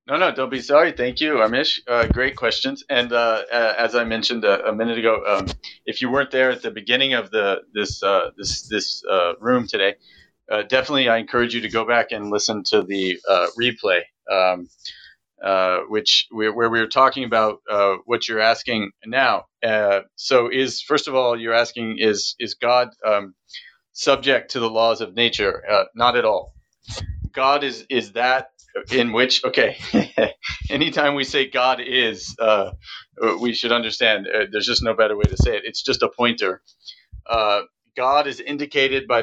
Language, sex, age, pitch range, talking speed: English, male, 40-59, 110-130 Hz, 185 wpm